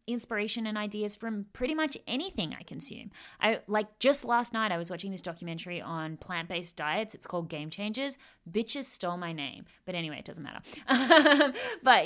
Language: English